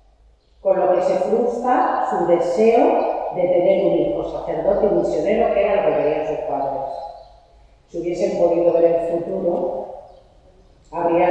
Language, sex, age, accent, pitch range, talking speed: Spanish, female, 40-59, Spanish, 160-195 Hz, 145 wpm